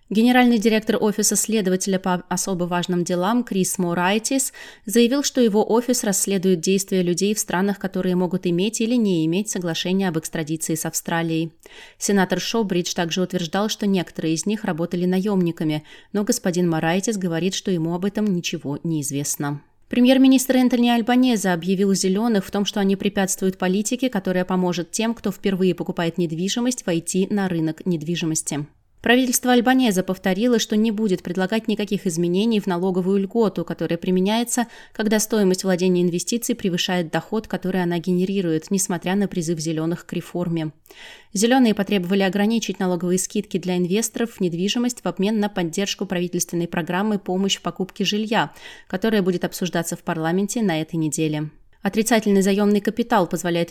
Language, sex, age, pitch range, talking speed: Russian, female, 20-39, 175-215 Hz, 150 wpm